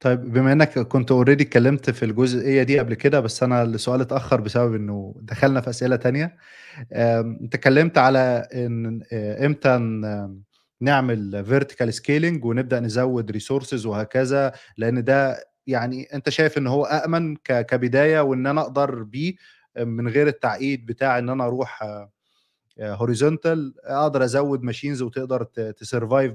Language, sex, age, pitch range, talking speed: Arabic, male, 20-39, 115-145 Hz, 130 wpm